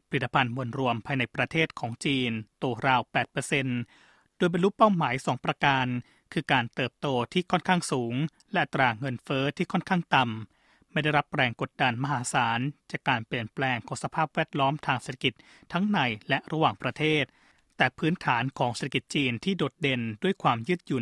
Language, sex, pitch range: Thai, male, 125-155 Hz